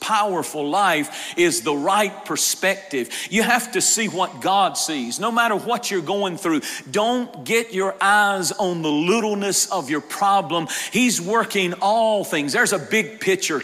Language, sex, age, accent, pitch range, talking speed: English, male, 40-59, American, 175-225 Hz, 165 wpm